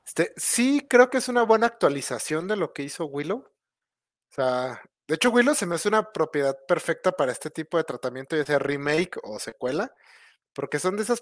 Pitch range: 140-185 Hz